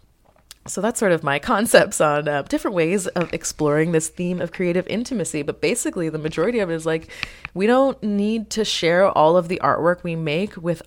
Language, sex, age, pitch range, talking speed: English, female, 20-39, 155-205 Hz, 205 wpm